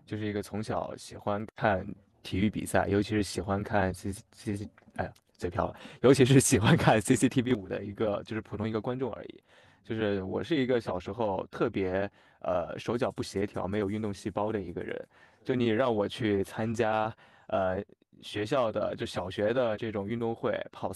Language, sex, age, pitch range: Chinese, male, 20-39, 100-120 Hz